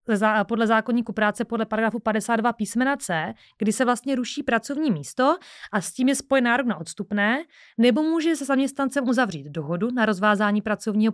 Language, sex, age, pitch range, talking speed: Czech, female, 30-49, 205-245 Hz, 165 wpm